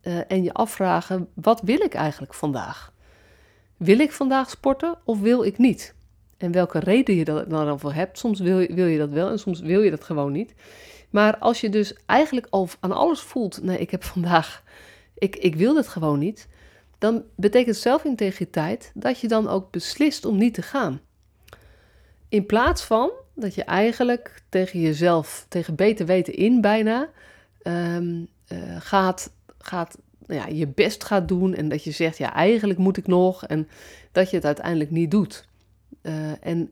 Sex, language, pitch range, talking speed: female, Dutch, 160-220 Hz, 175 wpm